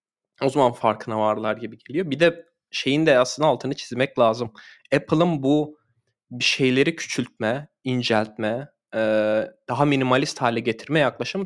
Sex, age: male, 20-39